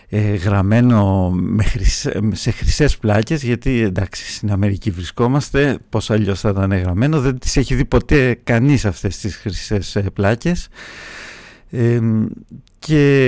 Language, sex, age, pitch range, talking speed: English, male, 50-69, 105-130 Hz, 115 wpm